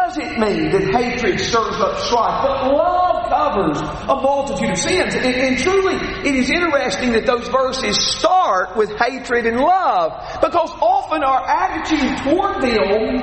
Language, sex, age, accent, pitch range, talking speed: English, male, 40-59, American, 220-295 Hz, 155 wpm